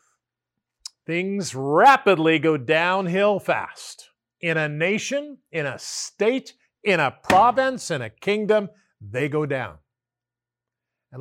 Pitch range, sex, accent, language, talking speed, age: 130-195 Hz, male, American, English, 110 wpm, 50-69